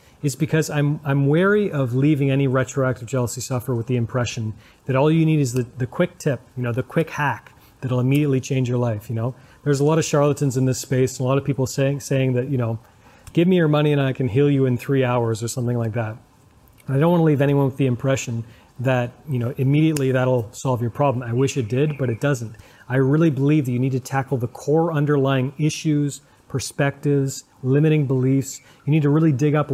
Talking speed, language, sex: 230 wpm, English, male